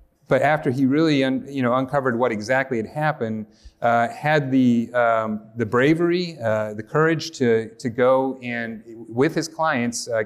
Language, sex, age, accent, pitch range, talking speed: English, male, 30-49, American, 115-140 Hz, 165 wpm